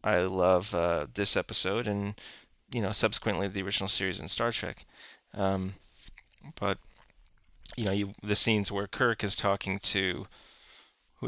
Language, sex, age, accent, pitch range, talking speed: English, male, 30-49, American, 95-115 Hz, 150 wpm